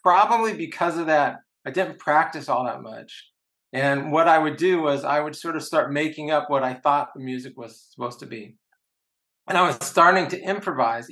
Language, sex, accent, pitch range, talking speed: English, male, American, 130-155 Hz, 205 wpm